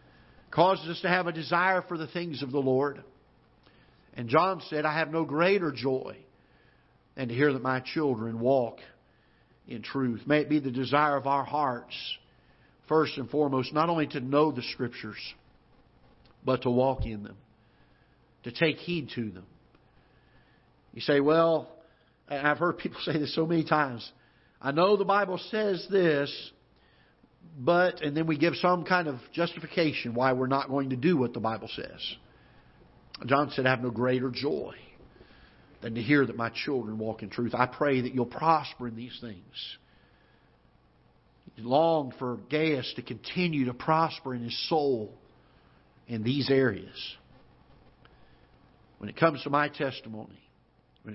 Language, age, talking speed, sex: English, 50-69, 160 wpm, male